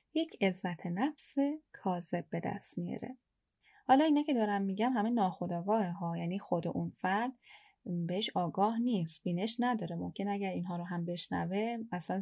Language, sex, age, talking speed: Persian, female, 10-29, 150 wpm